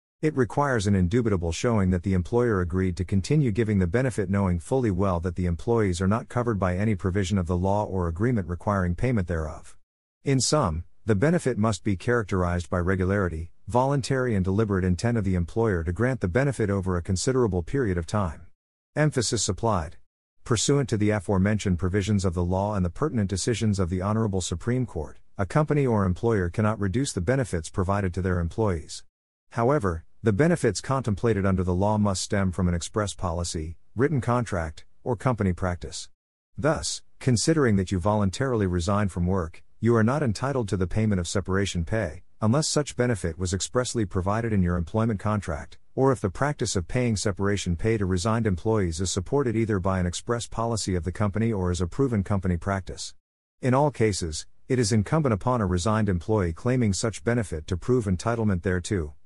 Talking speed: 185 wpm